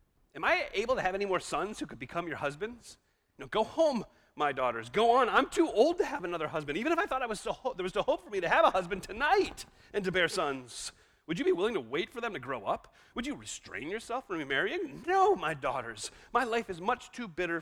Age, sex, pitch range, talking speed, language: 40-59, male, 125-205 Hz, 255 wpm, English